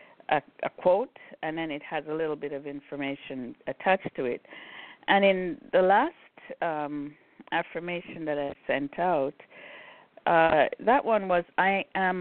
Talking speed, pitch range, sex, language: 150 wpm, 145-185 Hz, female, English